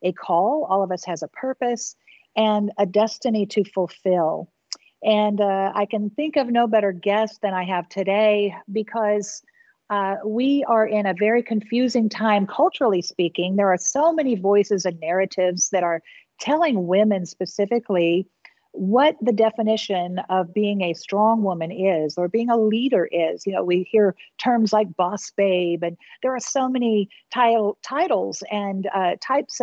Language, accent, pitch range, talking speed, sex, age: English, American, 185-230 Hz, 160 wpm, female, 50-69